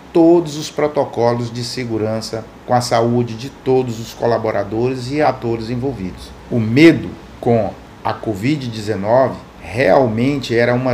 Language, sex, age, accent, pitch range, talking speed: Portuguese, male, 50-69, Brazilian, 115-150 Hz, 125 wpm